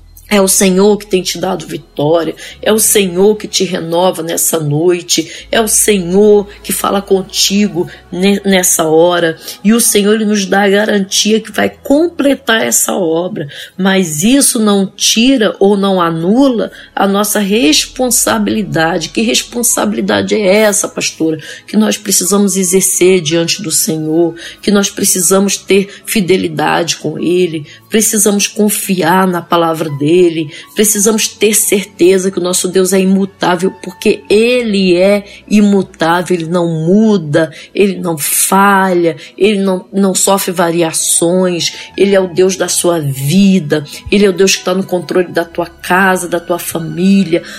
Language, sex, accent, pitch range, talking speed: Portuguese, female, Brazilian, 175-205 Hz, 145 wpm